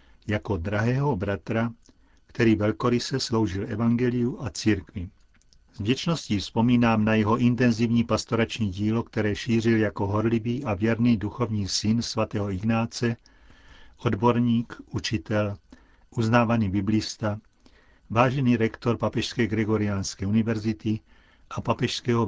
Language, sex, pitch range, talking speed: Czech, male, 100-120 Hz, 100 wpm